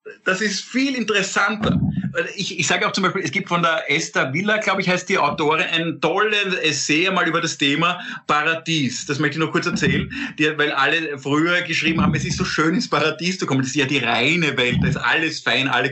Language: German